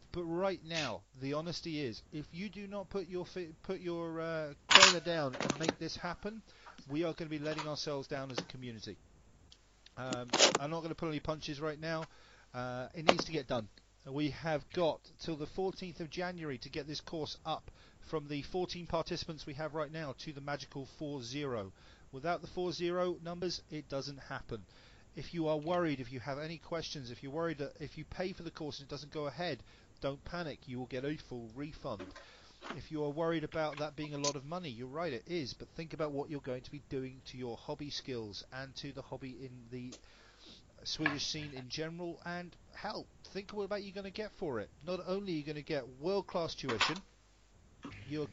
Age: 40-59